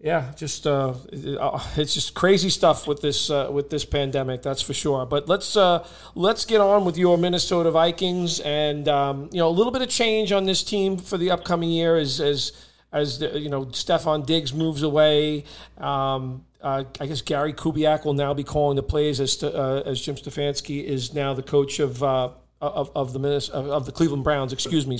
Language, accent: English, American